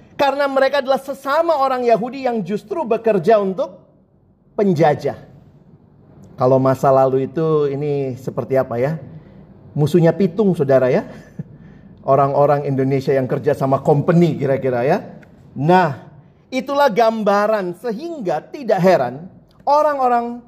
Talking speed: 110 wpm